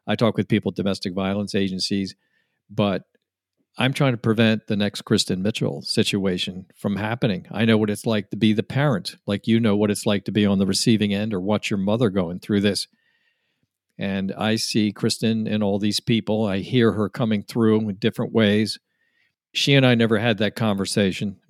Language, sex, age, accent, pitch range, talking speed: English, male, 50-69, American, 100-115 Hz, 200 wpm